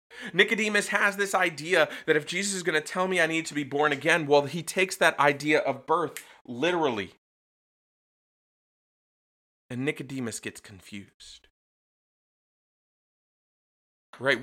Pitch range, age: 120-165 Hz, 30-49